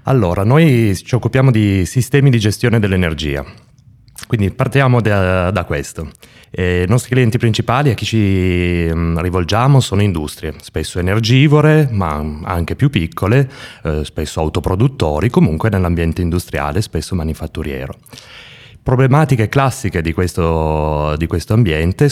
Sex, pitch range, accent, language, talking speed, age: male, 85-120 Hz, native, Italian, 120 wpm, 30-49